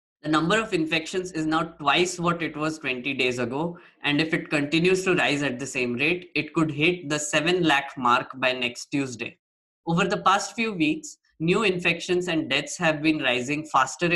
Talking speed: 195 wpm